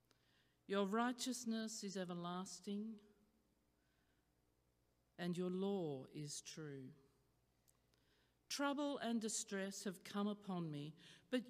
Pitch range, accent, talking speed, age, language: 145-230 Hz, Australian, 90 wpm, 50-69, English